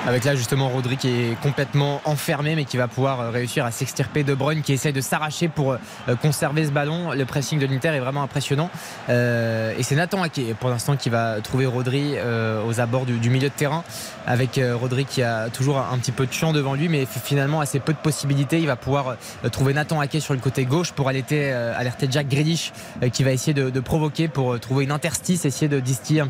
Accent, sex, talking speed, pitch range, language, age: French, male, 215 wpm, 130-155 Hz, French, 20-39